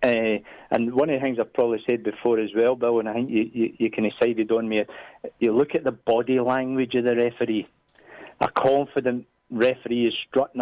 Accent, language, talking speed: British, English, 215 wpm